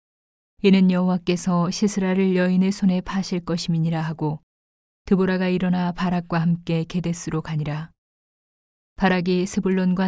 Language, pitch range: Korean, 165-190 Hz